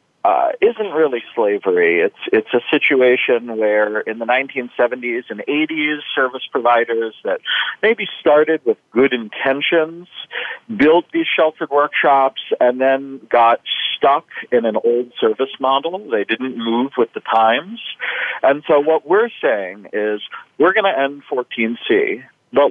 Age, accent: 50-69, American